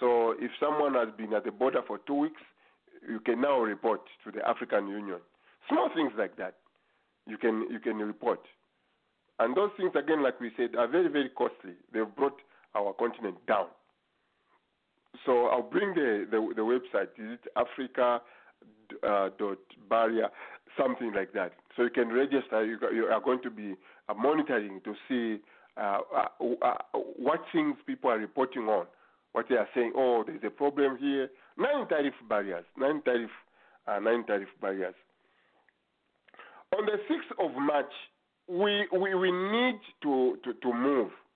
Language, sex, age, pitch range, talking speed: English, male, 50-69, 110-160 Hz, 160 wpm